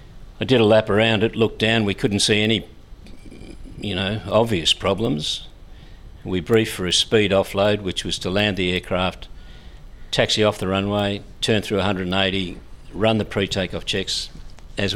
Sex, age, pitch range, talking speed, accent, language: male, 50-69, 90-105 Hz, 165 wpm, Australian, English